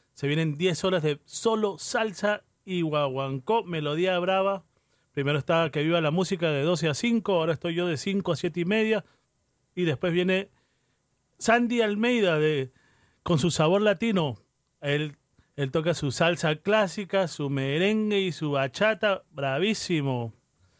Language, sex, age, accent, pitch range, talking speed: Spanish, male, 40-59, Argentinian, 140-180 Hz, 150 wpm